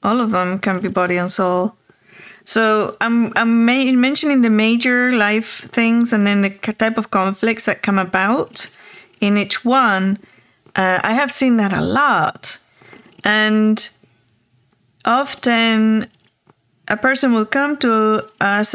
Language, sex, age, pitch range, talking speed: English, female, 30-49, 200-245 Hz, 145 wpm